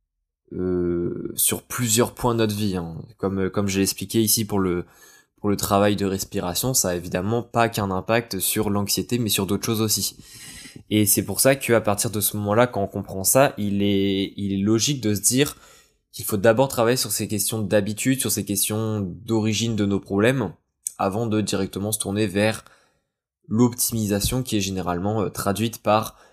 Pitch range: 100-115 Hz